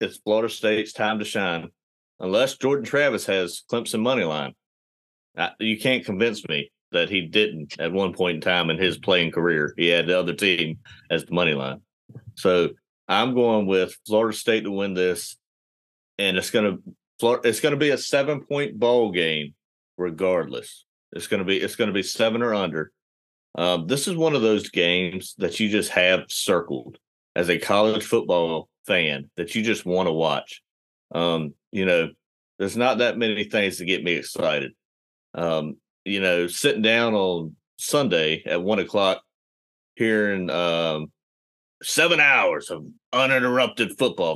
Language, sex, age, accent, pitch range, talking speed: English, male, 30-49, American, 85-110 Hz, 170 wpm